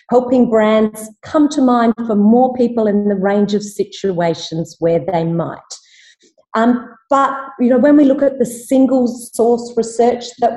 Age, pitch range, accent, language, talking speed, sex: 40-59, 195-245 Hz, Australian, English, 165 wpm, female